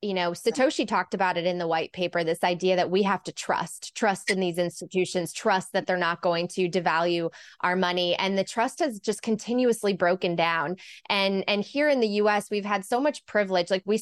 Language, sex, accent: English, female, American